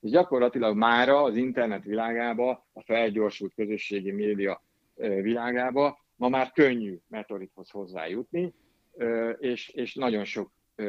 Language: Hungarian